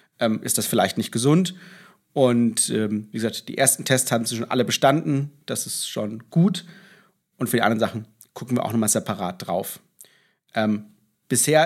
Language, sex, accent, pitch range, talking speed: German, male, German, 115-140 Hz, 175 wpm